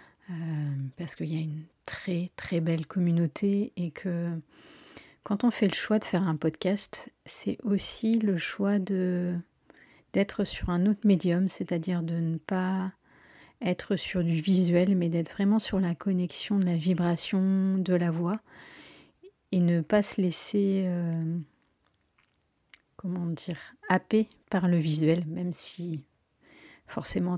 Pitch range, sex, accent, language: 170-195 Hz, female, French, French